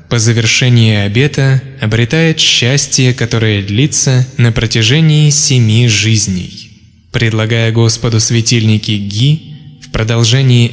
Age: 20-39